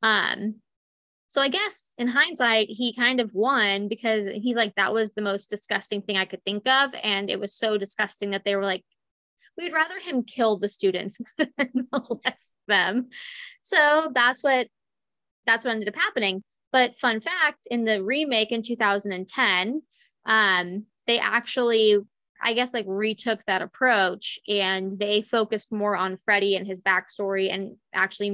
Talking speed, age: 165 wpm, 20-39